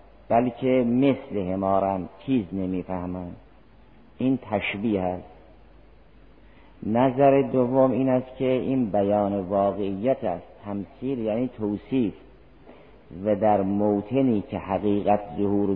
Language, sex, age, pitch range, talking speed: Persian, male, 50-69, 100-125 Hz, 100 wpm